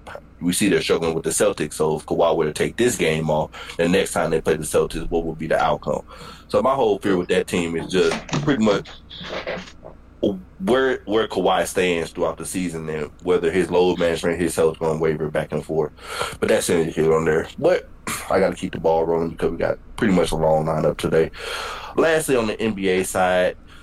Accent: American